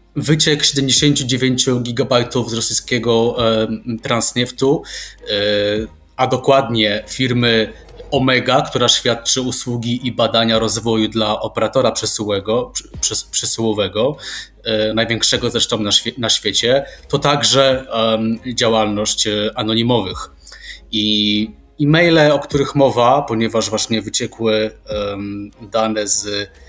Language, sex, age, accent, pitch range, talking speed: Polish, male, 20-39, native, 105-125 Hz, 90 wpm